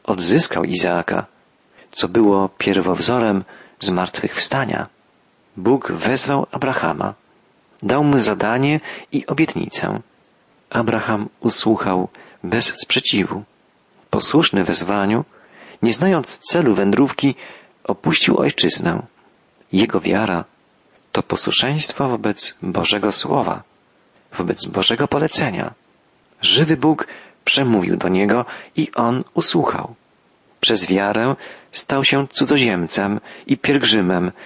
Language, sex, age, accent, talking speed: Polish, male, 40-59, native, 90 wpm